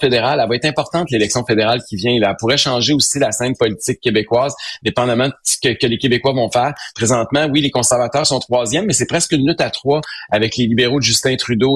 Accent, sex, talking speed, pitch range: Canadian, male, 235 wpm, 120-145 Hz